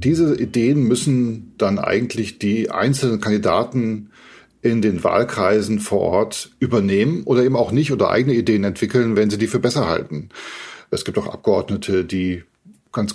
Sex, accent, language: male, German, German